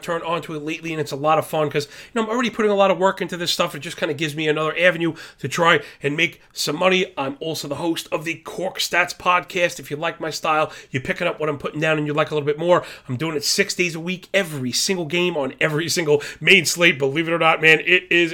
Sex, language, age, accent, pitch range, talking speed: male, English, 30-49, American, 145-170 Hz, 285 wpm